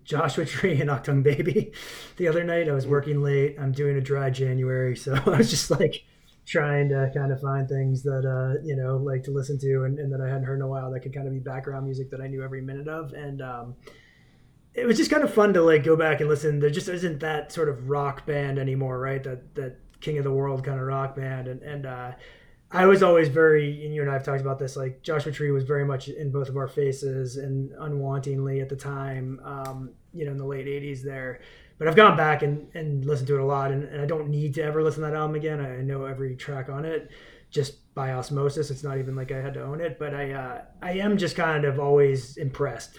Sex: male